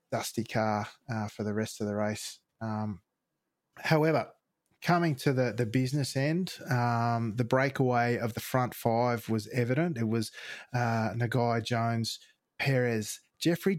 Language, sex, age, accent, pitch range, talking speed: English, male, 20-39, Australian, 115-135 Hz, 145 wpm